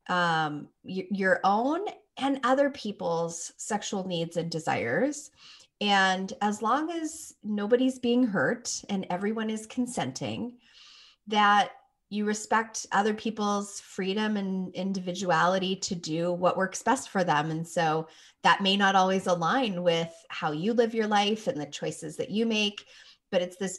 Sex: female